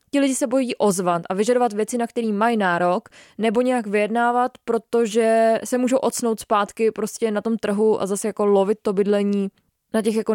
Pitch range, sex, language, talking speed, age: 200-225 Hz, female, Czech, 190 wpm, 20-39